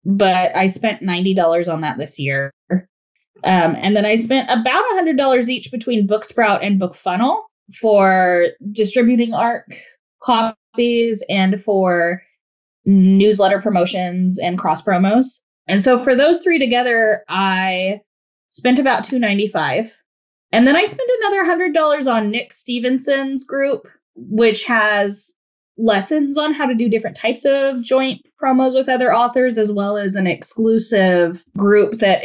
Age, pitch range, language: 10-29, 170-235 Hz, English